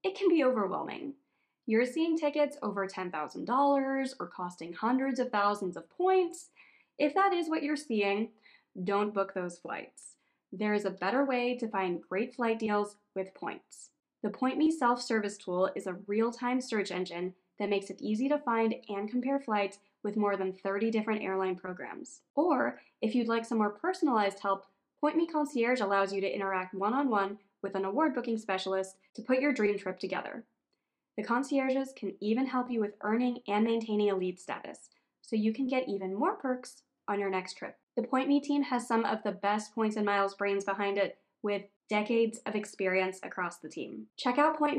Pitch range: 200-270 Hz